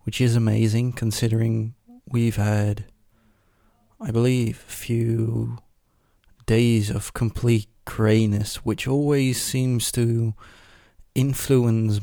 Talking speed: 95 wpm